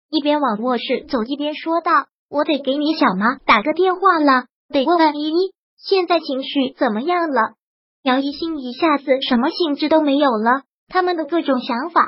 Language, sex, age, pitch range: Chinese, male, 20-39, 270-330 Hz